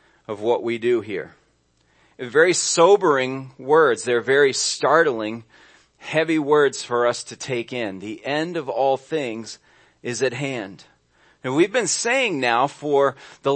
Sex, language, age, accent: male, English, 40-59, American